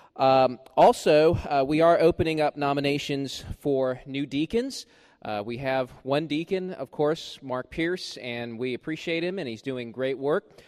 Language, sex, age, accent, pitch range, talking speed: English, male, 20-39, American, 125-155 Hz, 165 wpm